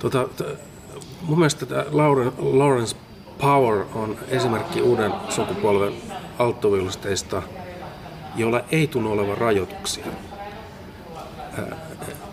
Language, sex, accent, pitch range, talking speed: Finnish, male, native, 100-130 Hz, 75 wpm